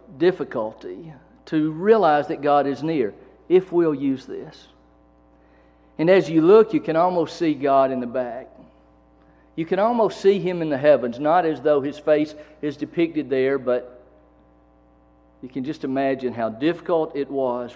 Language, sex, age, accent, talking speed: English, male, 50-69, American, 160 wpm